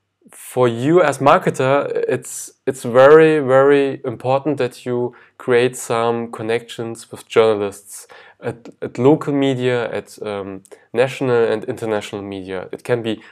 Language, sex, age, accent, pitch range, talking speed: English, male, 20-39, German, 115-140 Hz, 130 wpm